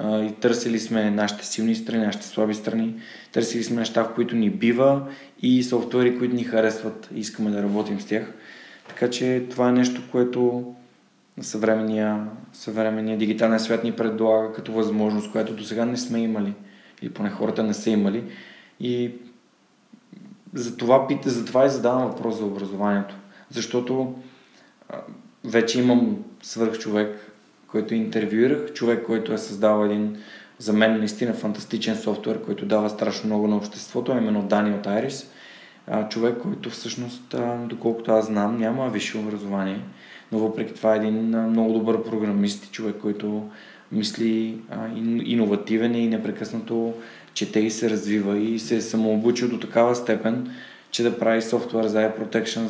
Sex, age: male, 20-39